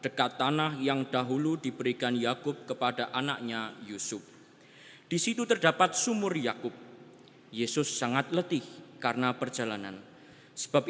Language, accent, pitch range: Indonesian, native, 120-150 Hz